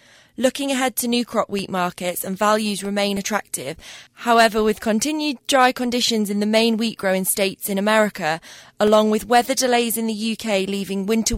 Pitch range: 195-225 Hz